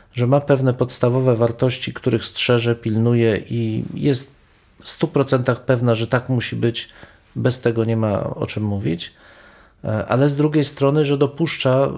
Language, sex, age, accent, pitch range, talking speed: Polish, male, 40-59, native, 115-135 Hz, 150 wpm